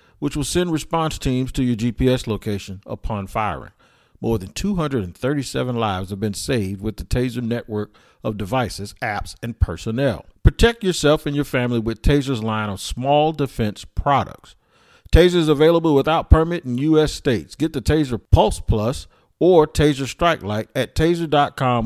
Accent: American